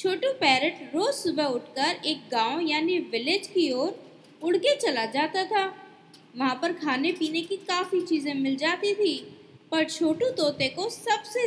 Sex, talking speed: female, 160 wpm